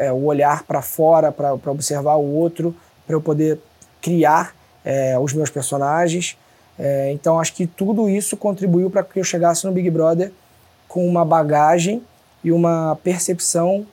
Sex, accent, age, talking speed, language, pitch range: male, Brazilian, 20-39, 160 wpm, Portuguese, 155-185 Hz